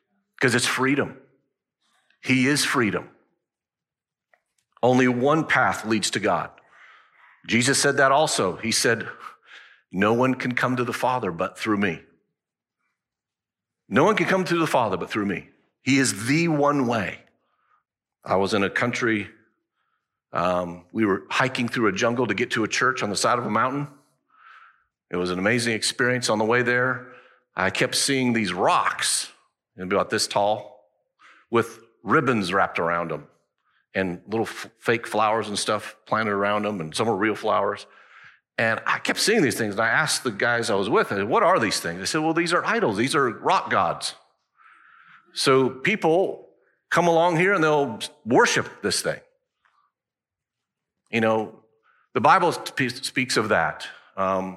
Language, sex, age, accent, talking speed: English, male, 50-69, American, 170 wpm